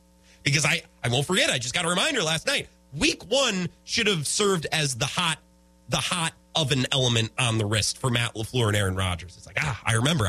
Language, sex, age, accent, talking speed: English, male, 30-49, American, 220 wpm